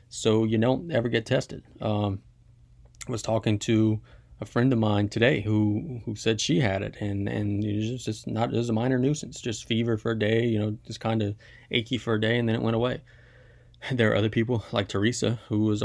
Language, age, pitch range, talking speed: English, 20-39, 105-120 Hz, 225 wpm